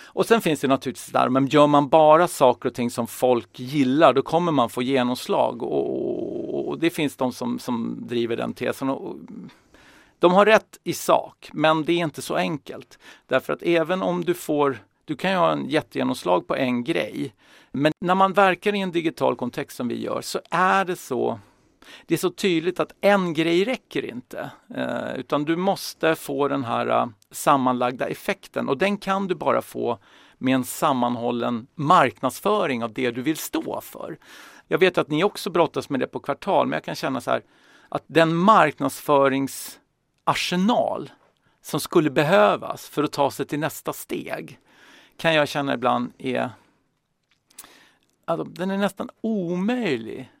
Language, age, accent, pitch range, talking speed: English, 50-69, Swedish, 135-185 Hz, 175 wpm